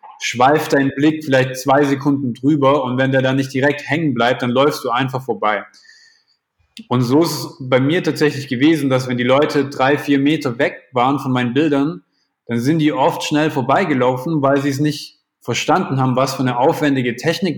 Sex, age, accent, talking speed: male, 20-39, German, 195 wpm